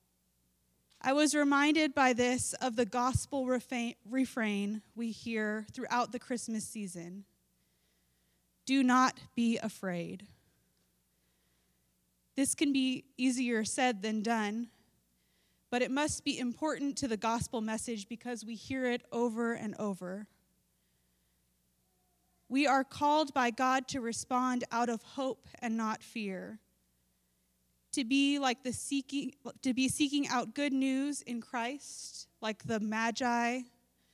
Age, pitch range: 20-39, 185-255 Hz